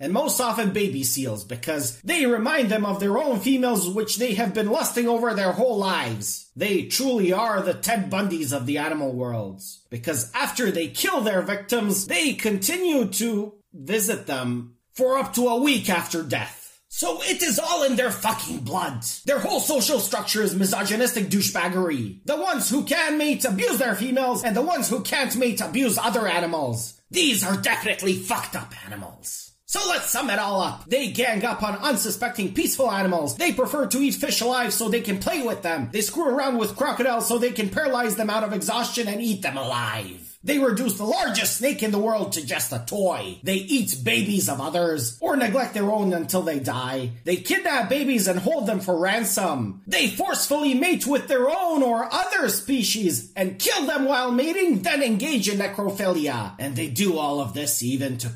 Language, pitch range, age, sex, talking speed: English, 175-250 Hz, 30-49, male, 195 wpm